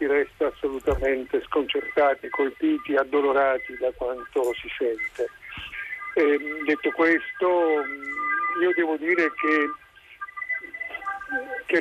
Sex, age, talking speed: male, 50-69, 85 wpm